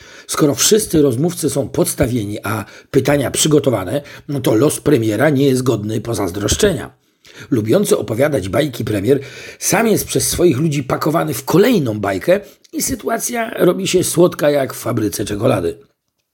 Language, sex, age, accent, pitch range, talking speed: Polish, male, 50-69, native, 135-190 Hz, 140 wpm